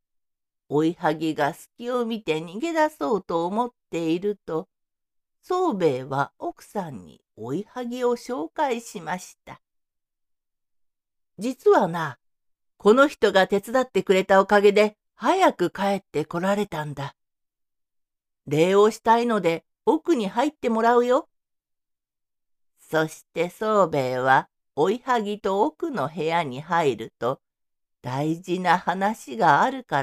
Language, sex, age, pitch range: Japanese, female, 50-69, 165-245 Hz